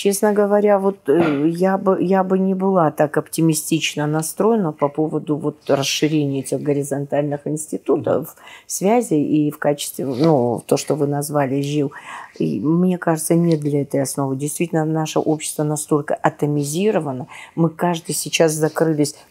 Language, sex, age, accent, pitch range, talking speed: Russian, female, 40-59, native, 145-170 Hz, 140 wpm